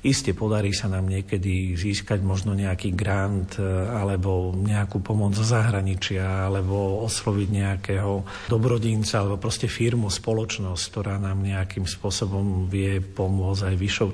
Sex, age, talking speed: male, 50-69, 125 wpm